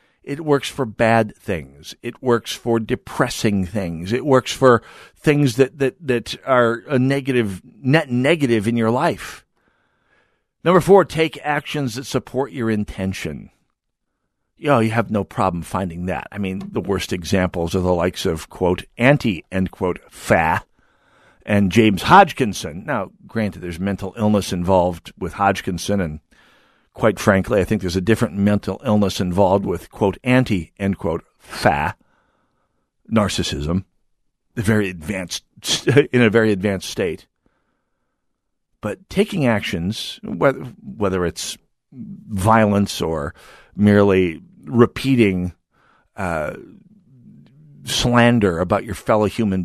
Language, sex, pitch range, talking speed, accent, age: English, male, 95-120 Hz, 125 wpm, American, 50-69